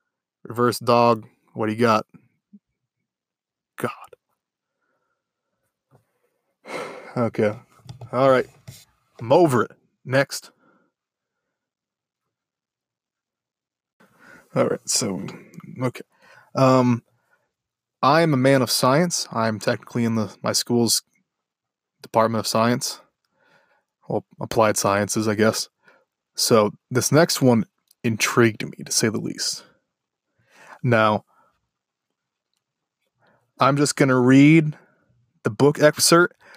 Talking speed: 95 wpm